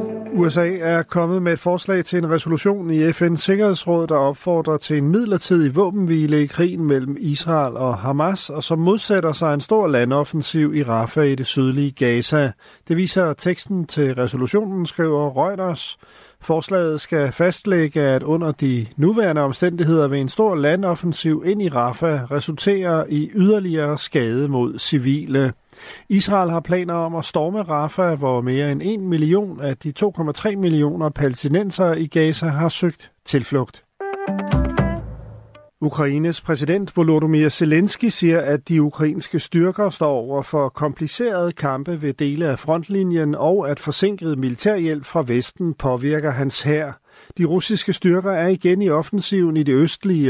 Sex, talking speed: male, 150 wpm